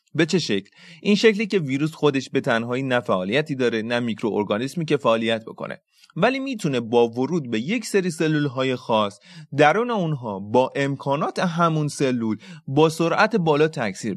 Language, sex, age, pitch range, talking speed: Persian, male, 30-49, 115-170 Hz, 155 wpm